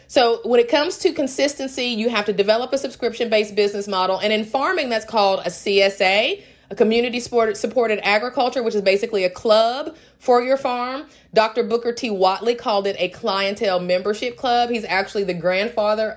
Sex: female